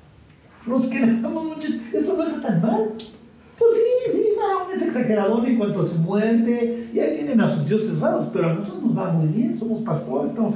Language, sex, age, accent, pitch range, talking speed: Spanish, male, 50-69, Mexican, 155-240 Hz, 205 wpm